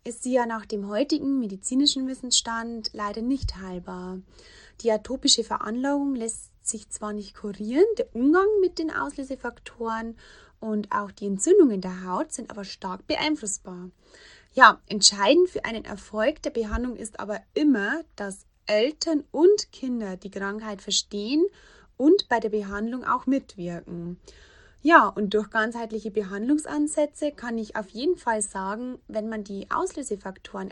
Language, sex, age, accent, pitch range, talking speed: German, female, 20-39, German, 205-285 Hz, 140 wpm